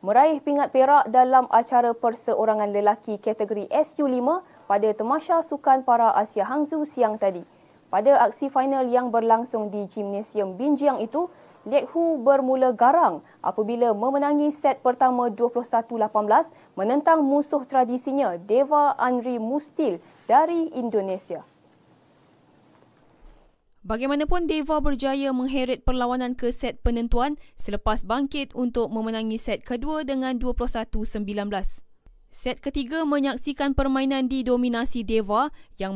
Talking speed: 110 wpm